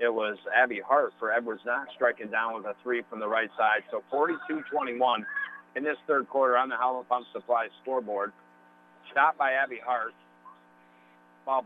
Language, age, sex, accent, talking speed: English, 50-69, male, American, 170 wpm